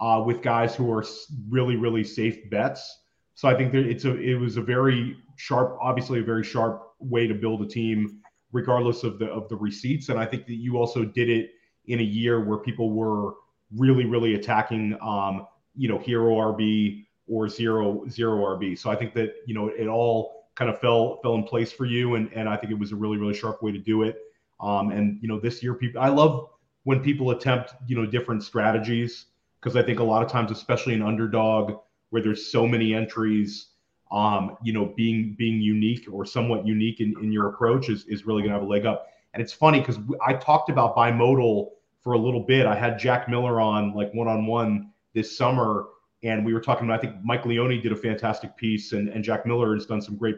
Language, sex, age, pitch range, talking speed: English, male, 30-49, 110-120 Hz, 225 wpm